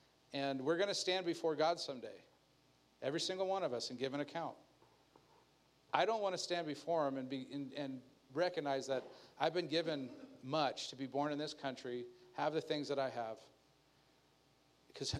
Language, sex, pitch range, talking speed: English, male, 125-160 Hz, 185 wpm